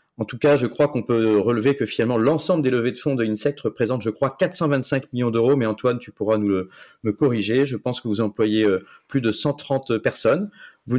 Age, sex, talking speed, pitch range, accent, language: 30-49, male, 230 wpm, 105-135 Hz, French, French